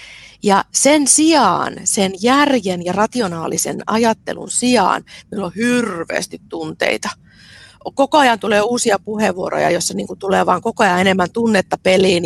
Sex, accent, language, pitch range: female, native, Finnish, 185-245 Hz